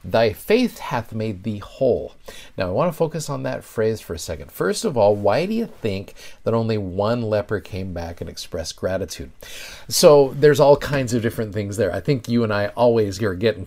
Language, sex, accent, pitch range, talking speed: English, male, American, 105-135 Hz, 215 wpm